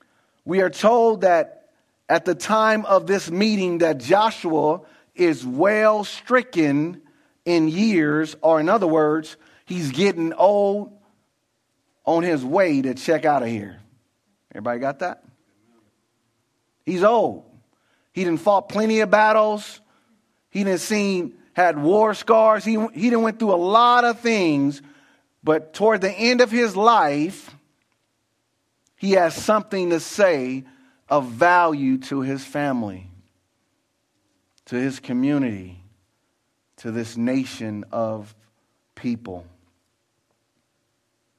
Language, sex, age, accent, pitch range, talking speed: English, male, 40-59, American, 130-215 Hz, 120 wpm